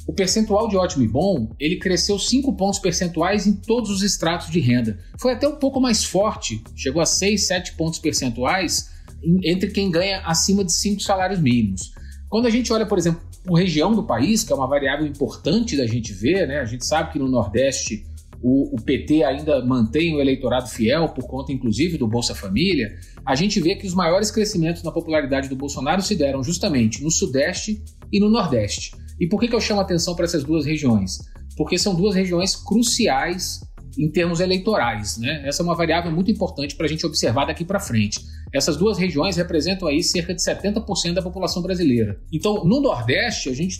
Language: Portuguese